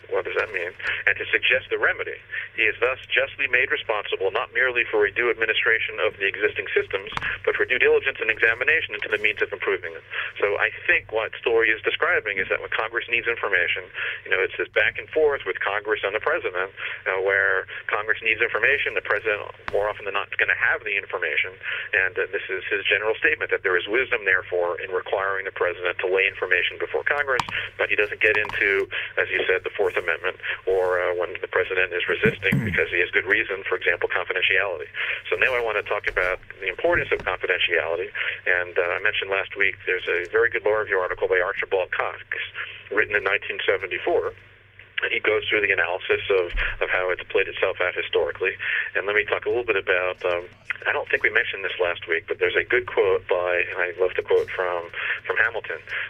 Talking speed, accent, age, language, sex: 215 wpm, American, 40-59, English, male